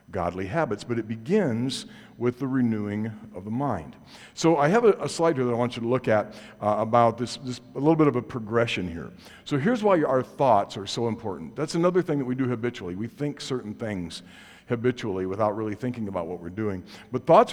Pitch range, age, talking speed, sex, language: 110-140 Hz, 50-69, 225 wpm, male, English